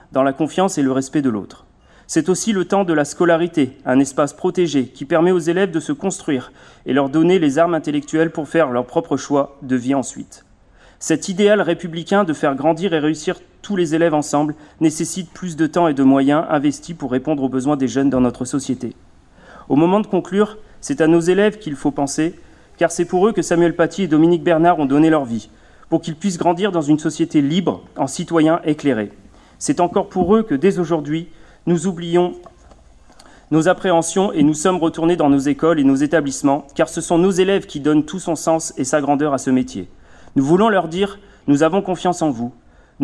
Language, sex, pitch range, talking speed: French, male, 140-175 Hz, 210 wpm